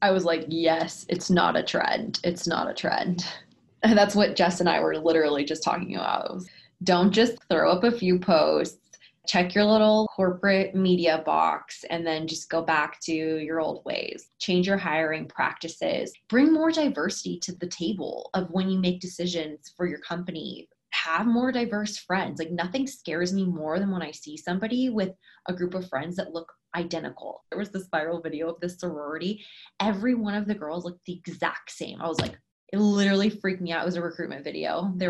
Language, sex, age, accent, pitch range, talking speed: English, female, 20-39, American, 170-205 Hz, 200 wpm